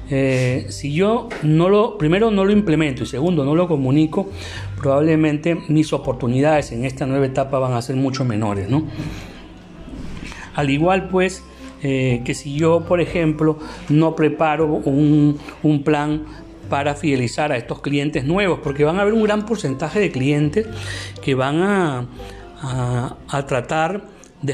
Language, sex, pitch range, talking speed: Spanish, male, 130-180 Hz, 155 wpm